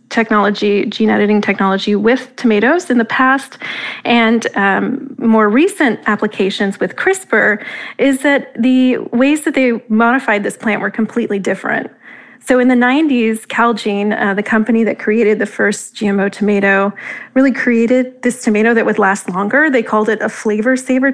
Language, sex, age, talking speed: English, female, 30-49, 160 wpm